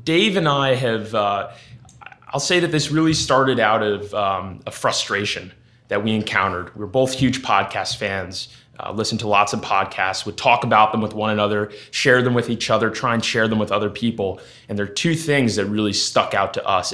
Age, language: 20-39, English